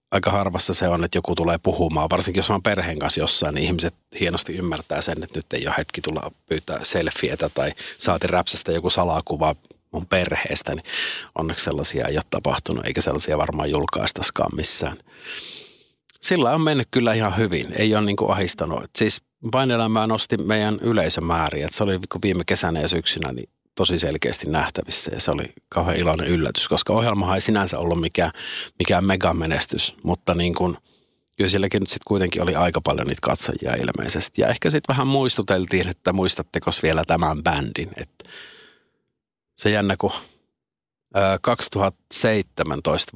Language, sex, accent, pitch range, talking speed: Finnish, male, native, 85-105 Hz, 155 wpm